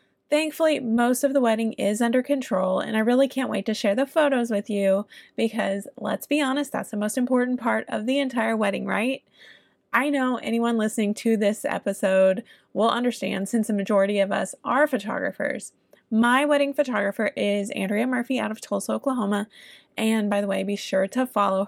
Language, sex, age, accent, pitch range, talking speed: English, female, 20-39, American, 200-240 Hz, 185 wpm